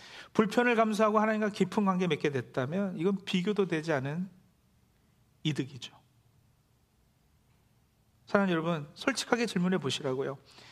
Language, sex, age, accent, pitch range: Korean, male, 40-59, native, 130-200 Hz